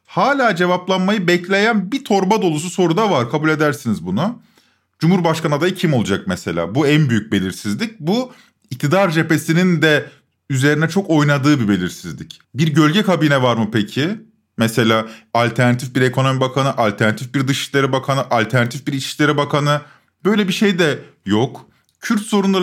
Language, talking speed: Turkish, 150 wpm